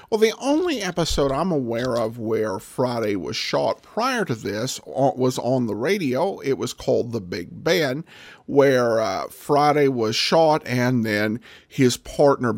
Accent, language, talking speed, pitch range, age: American, English, 155 wpm, 120-175 Hz, 50-69